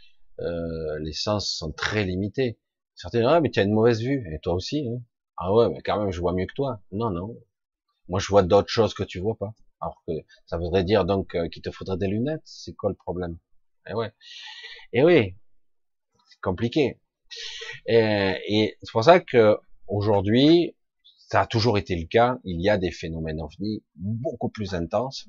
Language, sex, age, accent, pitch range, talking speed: French, male, 30-49, French, 90-125 Hz, 200 wpm